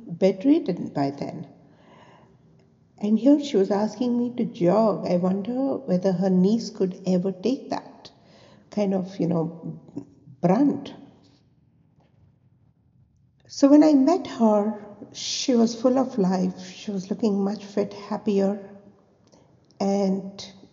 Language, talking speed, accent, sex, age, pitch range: English, 120 wpm, Indian, female, 60-79, 190-225 Hz